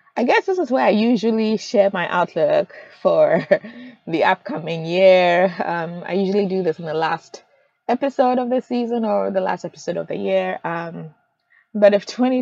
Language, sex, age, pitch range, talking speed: English, female, 20-39, 165-210 Hz, 180 wpm